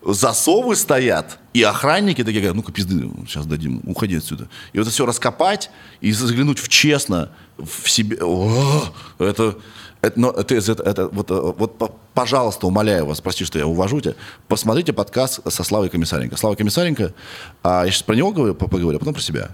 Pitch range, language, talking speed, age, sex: 90-125 Hz, Russian, 170 wpm, 20-39, male